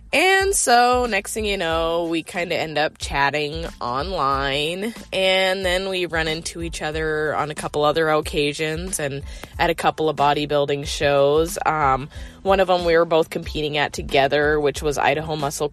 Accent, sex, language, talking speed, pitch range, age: American, female, English, 175 wpm, 155-205 Hz, 20-39